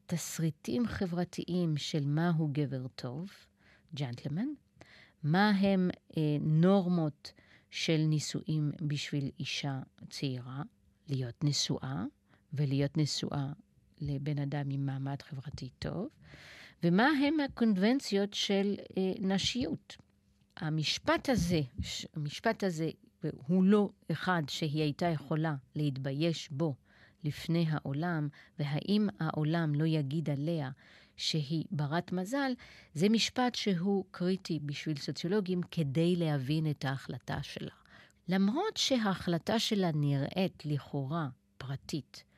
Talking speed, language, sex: 100 wpm, Hebrew, female